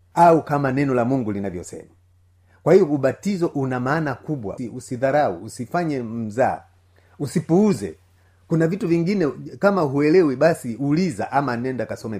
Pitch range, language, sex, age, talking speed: 110-160 Hz, Swahili, male, 30-49, 130 wpm